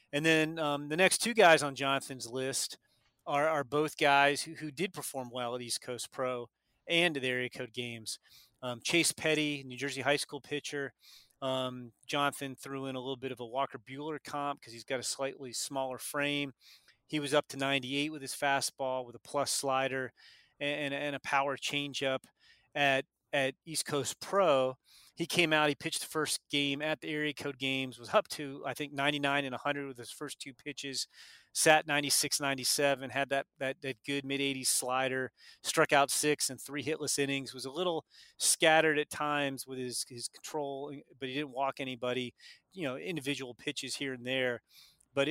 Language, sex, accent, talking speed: English, male, American, 195 wpm